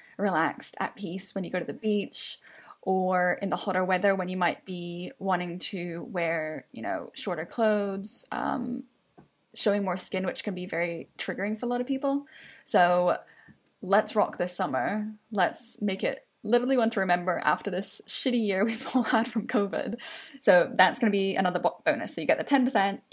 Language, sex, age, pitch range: English, female, 10-29, 185-230 Hz